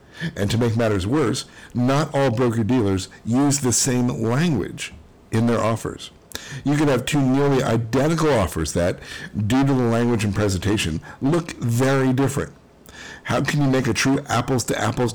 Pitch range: 90-125 Hz